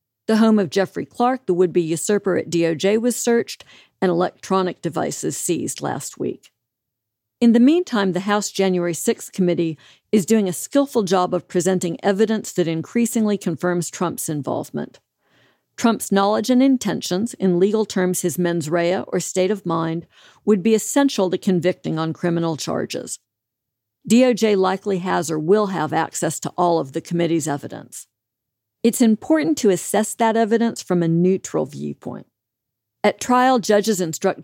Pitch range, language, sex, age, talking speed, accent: 165-210 Hz, English, female, 50-69, 150 wpm, American